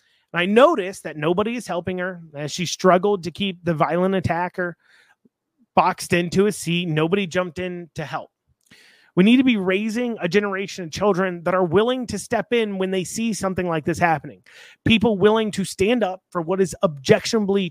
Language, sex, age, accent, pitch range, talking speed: English, male, 30-49, American, 165-205 Hz, 185 wpm